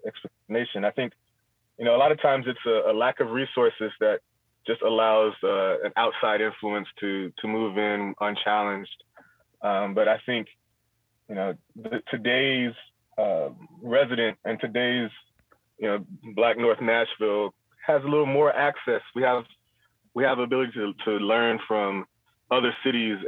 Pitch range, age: 100-115 Hz, 20-39